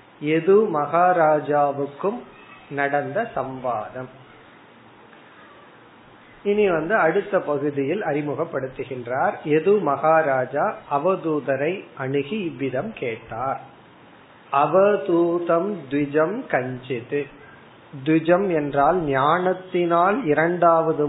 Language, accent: Tamil, native